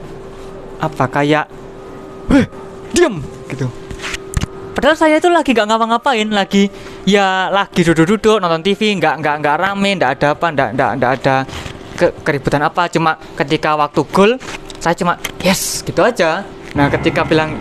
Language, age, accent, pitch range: Indonesian, 20-39, native, 150-200 Hz